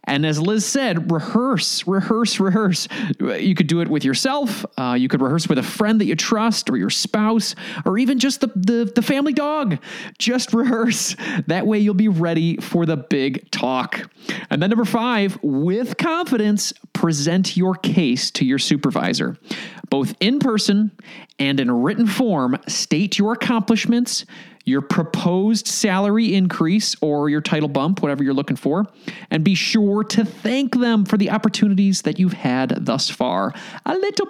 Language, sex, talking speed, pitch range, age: English, male, 165 wpm, 170-230 Hz, 30-49